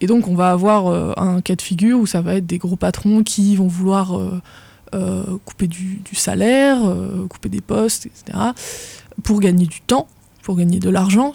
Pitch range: 185-220 Hz